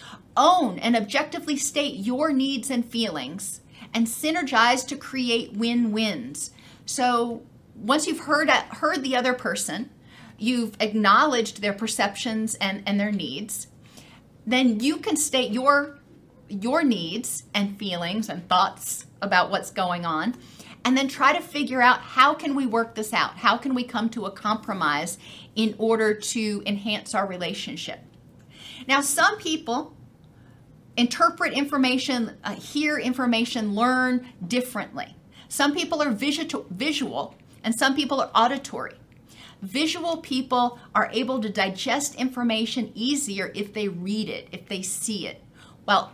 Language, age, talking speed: English, 40-59, 135 wpm